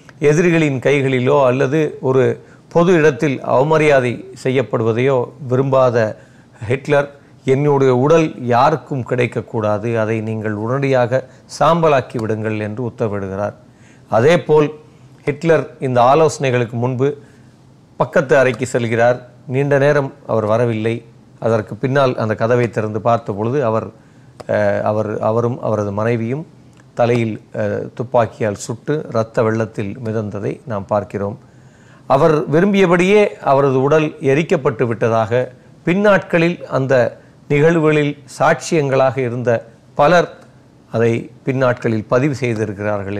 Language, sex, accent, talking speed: Tamil, male, native, 95 wpm